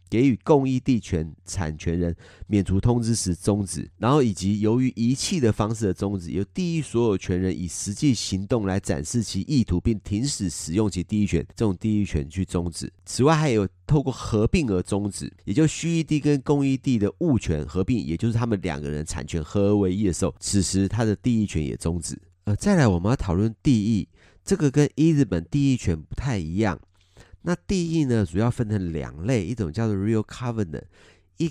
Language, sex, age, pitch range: Chinese, male, 30-49, 90-125 Hz